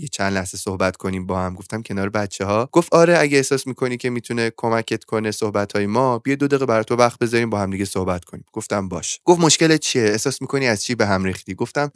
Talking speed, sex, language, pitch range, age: 235 wpm, male, Persian, 100-130 Hz, 20-39